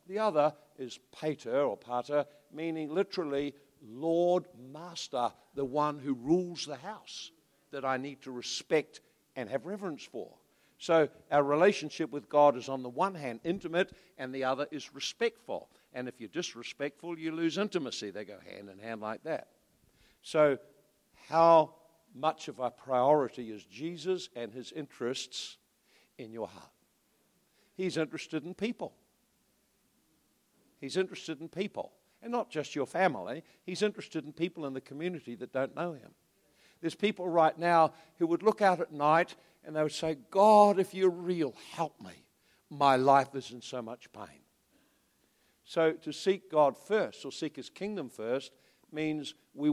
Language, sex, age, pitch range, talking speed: English, male, 60-79, 135-180 Hz, 160 wpm